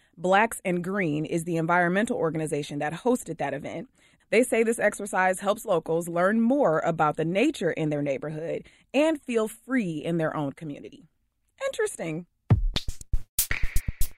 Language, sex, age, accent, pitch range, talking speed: English, female, 20-39, American, 155-210 Hz, 140 wpm